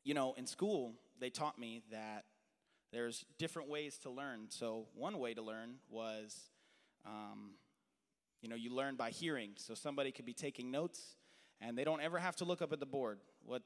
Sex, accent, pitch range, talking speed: male, American, 125-185 Hz, 195 wpm